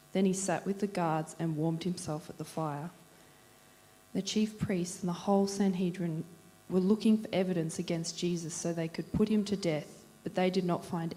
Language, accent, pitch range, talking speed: English, Australian, 165-195 Hz, 200 wpm